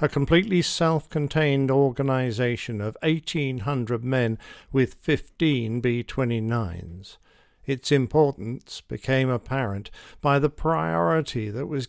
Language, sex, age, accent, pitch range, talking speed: English, male, 50-69, British, 115-145 Hz, 95 wpm